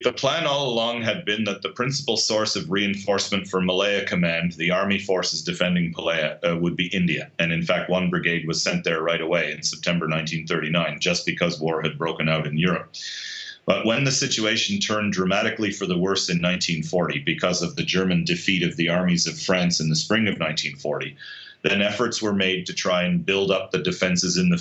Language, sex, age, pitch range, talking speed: English, male, 40-59, 85-105 Hz, 205 wpm